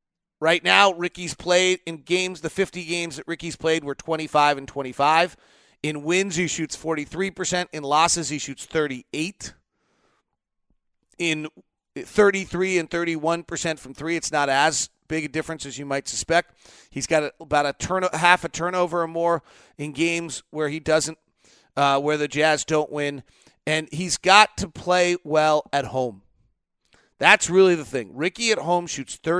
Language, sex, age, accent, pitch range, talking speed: English, male, 40-59, American, 145-175 Hz, 160 wpm